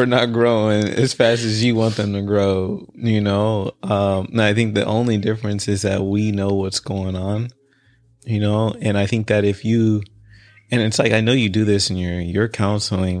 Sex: male